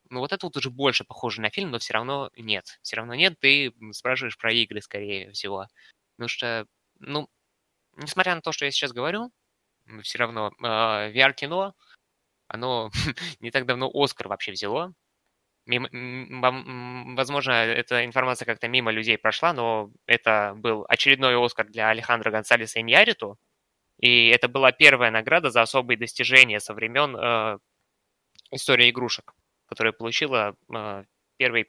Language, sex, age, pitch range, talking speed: Ukrainian, male, 20-39, 110-130 Hz, 150 wpm